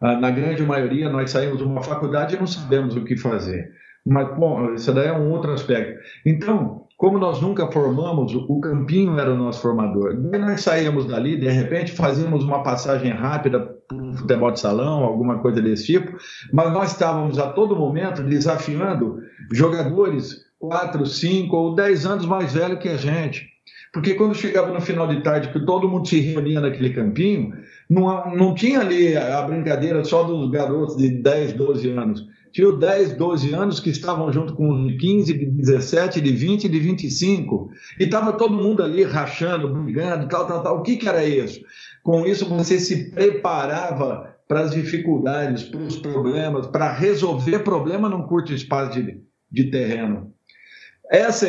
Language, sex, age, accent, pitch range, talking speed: Portuguese, male, 50-69, Brazilian, 140-180 Hz, 170 wpm